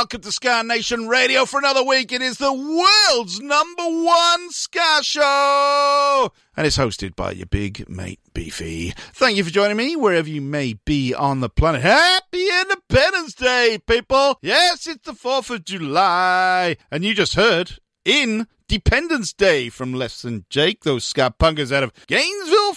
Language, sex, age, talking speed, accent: English, male, 40-59, 165 wpm, British